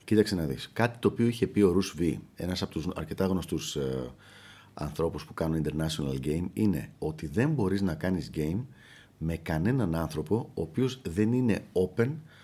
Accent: native